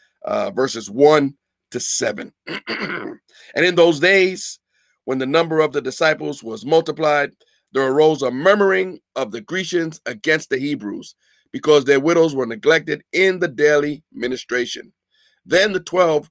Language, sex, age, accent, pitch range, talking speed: English, male, 50-69, American, 145-215 Hz, 145 wpm